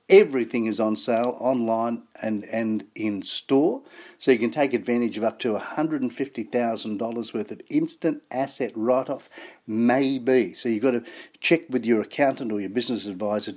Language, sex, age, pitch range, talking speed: English, male, 50-69, 115-135 Hz, 160 wpm